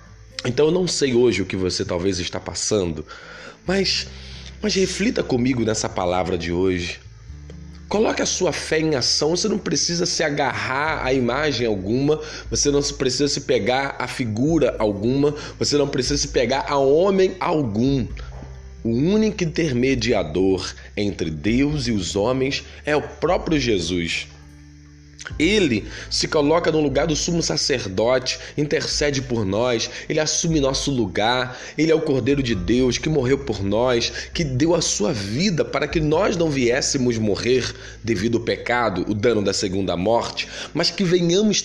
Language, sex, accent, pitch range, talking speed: Portuguese, male, Brazilian, 105-155 Hz, 155 wpm